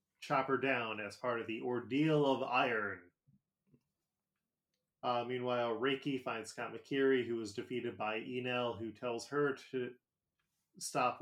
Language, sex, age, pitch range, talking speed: English, male, 20-39, 120-140 Hz, 135 wpm